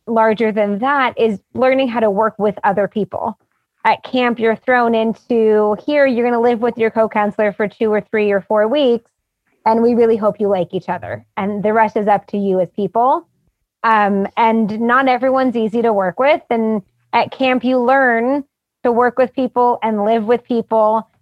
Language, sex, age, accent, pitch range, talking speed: English, female, 20-39, American, 210-245 Hz, 195 wpm